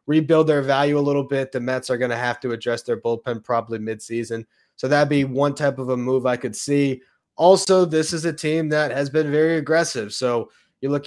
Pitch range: 120-145 Hz